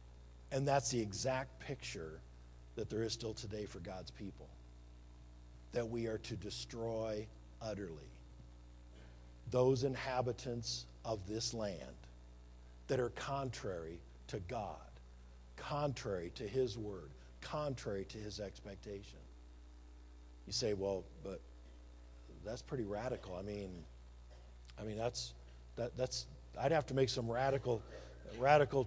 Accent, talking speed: American, 125 wpm